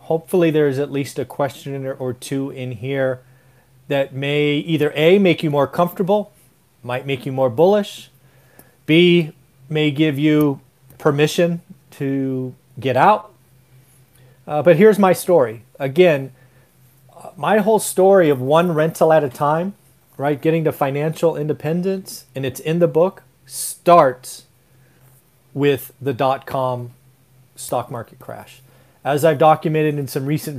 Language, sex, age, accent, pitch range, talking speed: English, male, 30-49, American, 130-155 Hz, 135 wpm